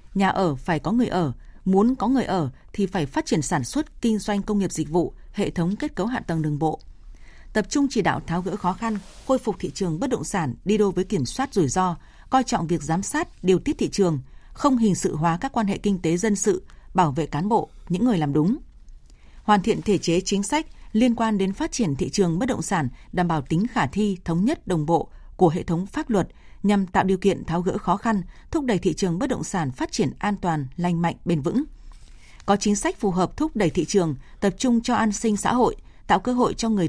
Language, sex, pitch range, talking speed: Vietnamese, female, 170-225 Hz, 250 wpm